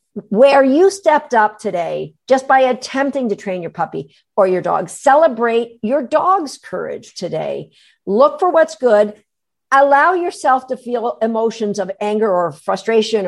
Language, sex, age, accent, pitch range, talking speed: English, female, 50-69, American, 195-275 Hz, 150 wpm